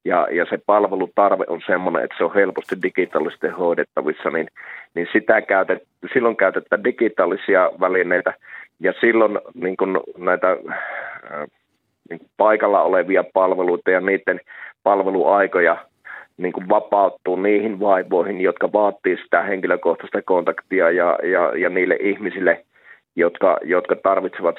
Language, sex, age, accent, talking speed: Finnish, male, 30-49, native, 120 wpm